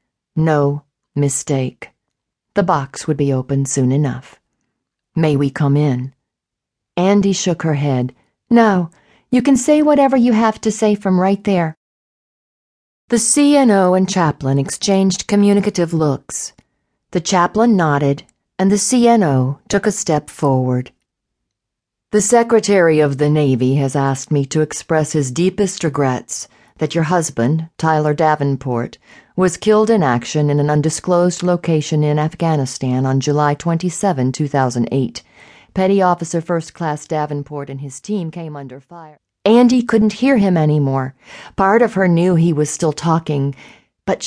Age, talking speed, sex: 50-69, 140 wpm, female